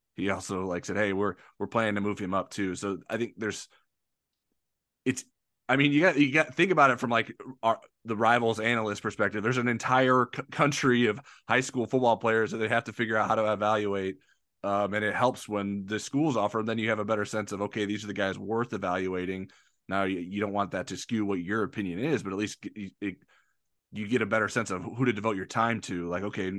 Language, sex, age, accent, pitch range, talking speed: English, male, 20-39, American, 95-110 Hz, 240 wpm